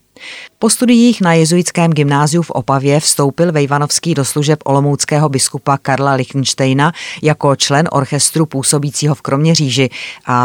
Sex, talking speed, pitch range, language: female, 125 wpm, 135-160 Hz, Czech